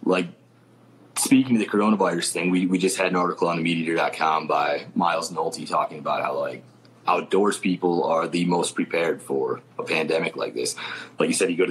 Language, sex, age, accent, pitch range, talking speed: English, male, 30-49, American, 90-105 Hz, 195 wpm